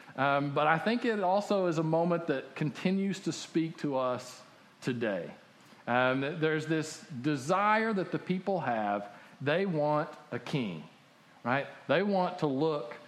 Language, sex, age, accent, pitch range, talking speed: English, male, 40-59, American, 150-200 Hz, 150 wpm